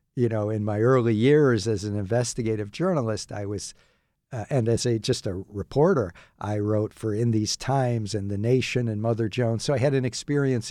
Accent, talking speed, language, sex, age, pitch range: American, 200 wpm, English, male, 60-79, 110-125 Hz